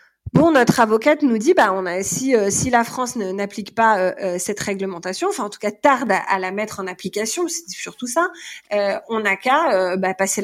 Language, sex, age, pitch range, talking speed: French, female, 30-49, 200-245 Hz, 230 wpm